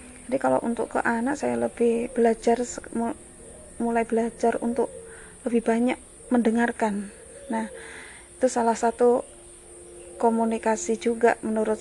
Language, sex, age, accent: Indonesian, female, 30-49, native